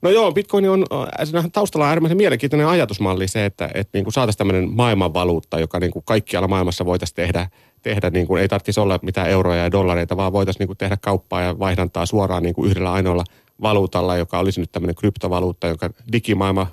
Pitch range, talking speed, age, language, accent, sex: 95-125 Hz, 160 wpm, 30-49, Finnish, native, male